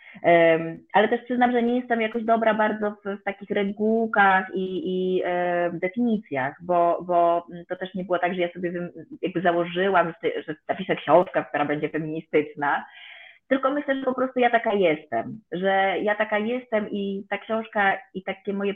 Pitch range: 170-215 Hz